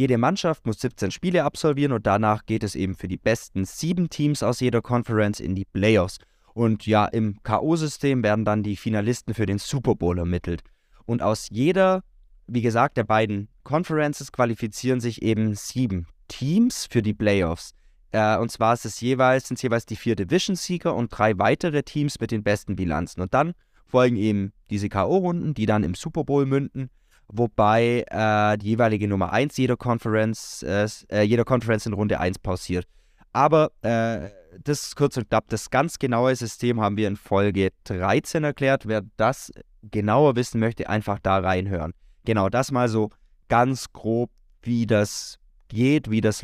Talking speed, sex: 170 wpm, male